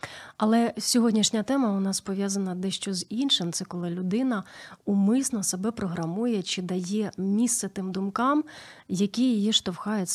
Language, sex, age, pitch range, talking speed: Ukrainian, female, 30-49, 185-235 Hz, 135 wpm